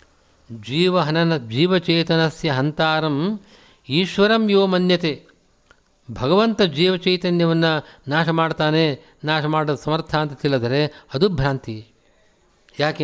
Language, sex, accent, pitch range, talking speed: Kannada, male, native, 140-175 Hz, 85 wpm